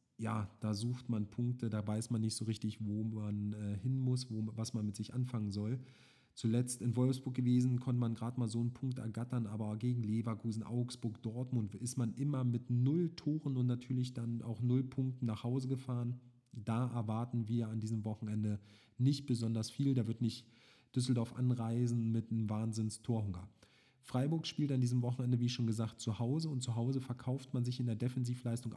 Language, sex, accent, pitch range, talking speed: German, male, German, 110-130 Hz, 185 wpm